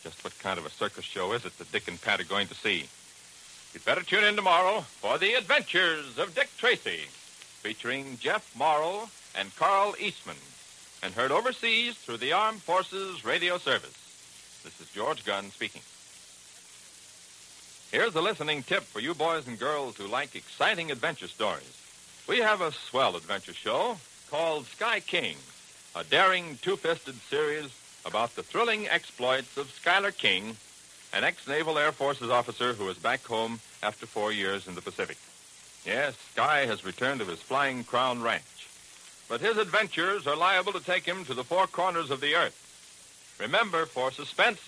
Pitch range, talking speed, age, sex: 120-195 Hz, 165 wpm, 60-79, male